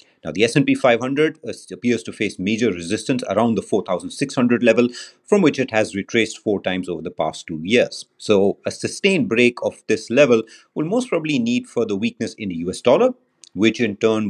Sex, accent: male, Indian